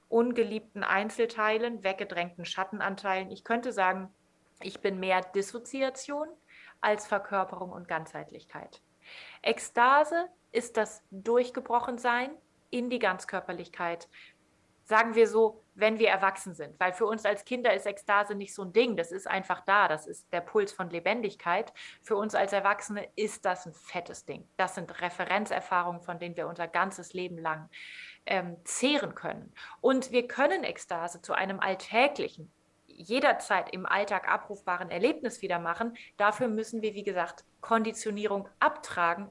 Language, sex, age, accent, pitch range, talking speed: German, female, 30-49, German, 190-250 Hz, 140 wpm